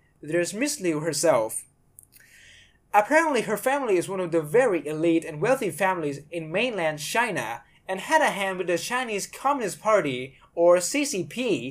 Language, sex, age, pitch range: Thai, male, 20-39, 160-245 Hz